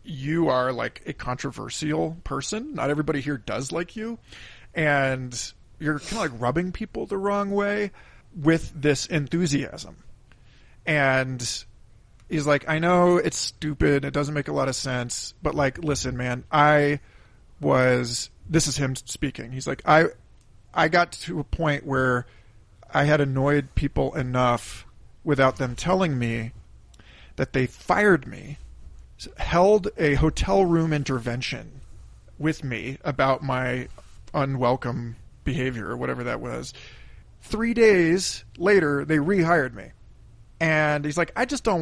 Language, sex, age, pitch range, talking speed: English, male, 40-59, 120-160 Hz, 140 wpm